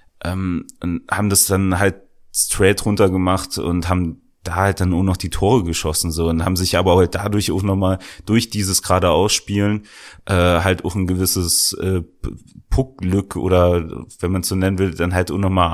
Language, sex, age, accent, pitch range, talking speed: German, male, 30-49, German, 90-105 Hz, 190 wpm